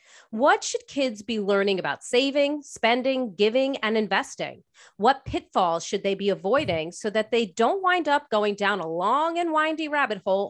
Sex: female